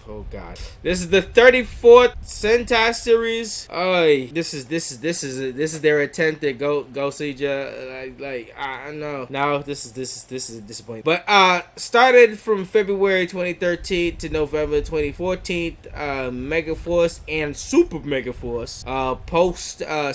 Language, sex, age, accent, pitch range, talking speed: English, male, 20-39, American, 135-170 Hz, 165 wpm